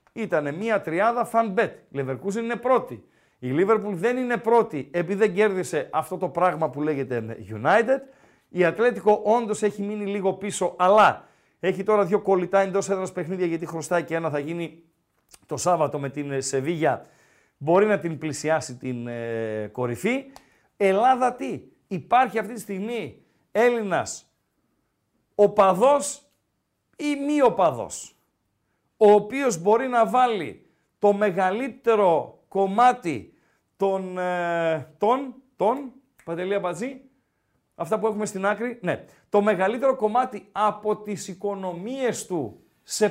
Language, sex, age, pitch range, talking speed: Greek, male, 50-69, 170-225 Hz, 130 wpm